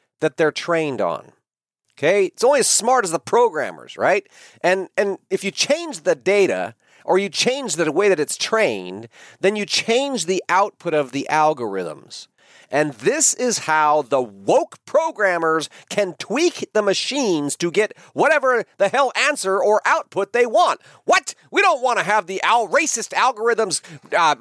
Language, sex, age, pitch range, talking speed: English, male, 40-59, 155-235 Hz, 165 wpm